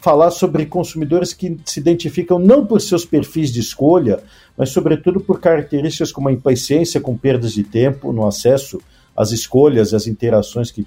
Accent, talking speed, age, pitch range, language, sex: Brazilian, 170 wpm, 50-69, 125-170 Hz, Portuguese, male